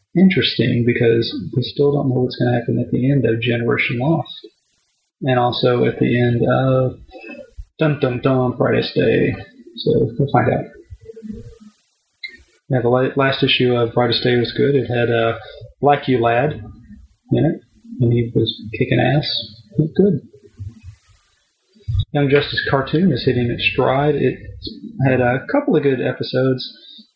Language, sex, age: English, male, 30-49